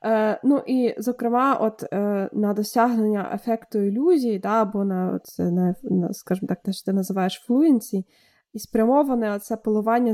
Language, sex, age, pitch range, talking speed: Ukrainian, female, 20-39, 195-235 Hz, 150 wpm